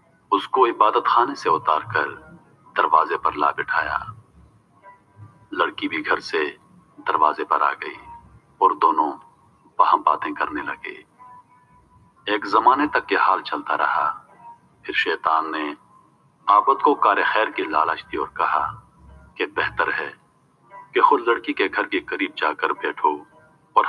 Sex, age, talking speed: male, 40-59, 130 wpm